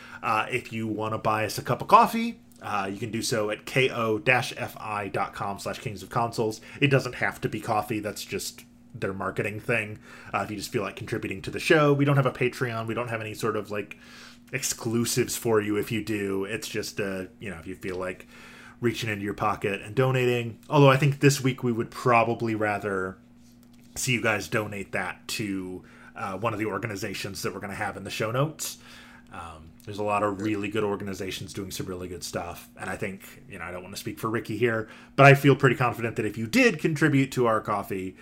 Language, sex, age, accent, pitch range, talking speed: English, male, 20-39, American, 105-130 Hz, 225 wpm